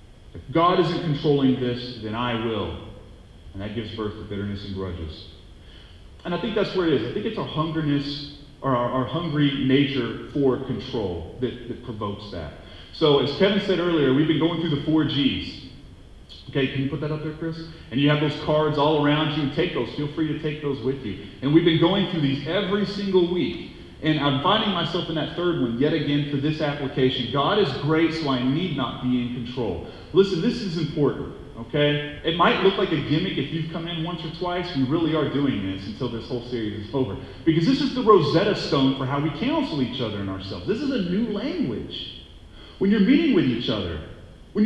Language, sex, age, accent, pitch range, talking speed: English, male, 30-49, American, 120-175 Hz, 220 wpm